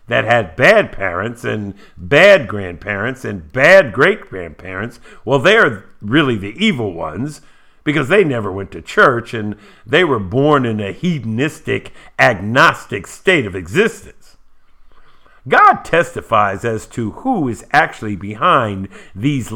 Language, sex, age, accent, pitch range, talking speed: English, male, 50-69, American, 100-145 Hz, 130 wpm